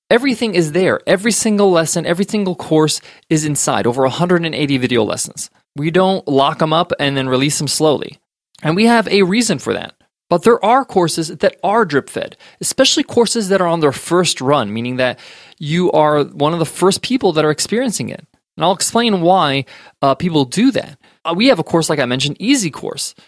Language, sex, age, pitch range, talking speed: English, male, 20-39, 145-205 Hz, 200 wpm